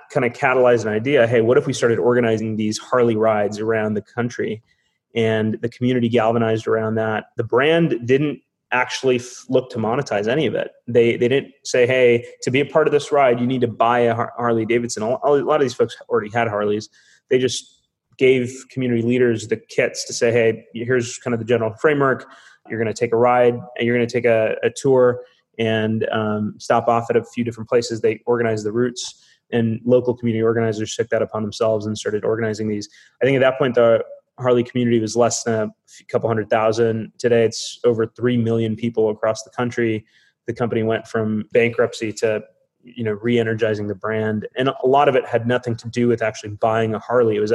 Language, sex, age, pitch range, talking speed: English, male, 20-39, 110-125 Hz, 210 wpm